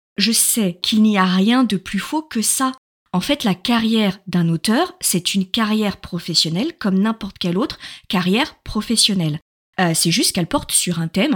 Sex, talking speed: female, 185 wpm